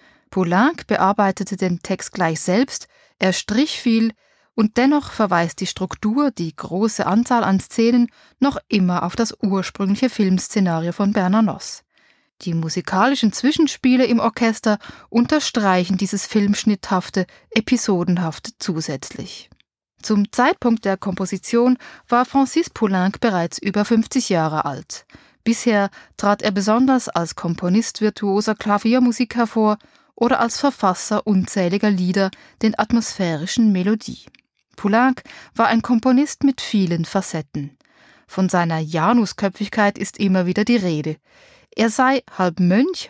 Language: German